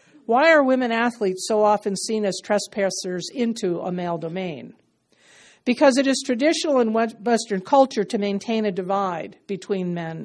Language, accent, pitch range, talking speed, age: English, American, 195-255 Hz, 150 wpm, 50-69